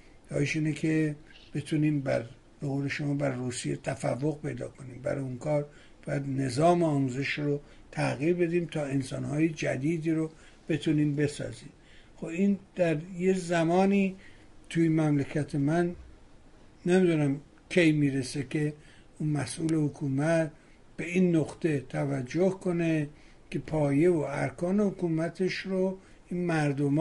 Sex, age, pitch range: male, 60-79, 145-175 Hz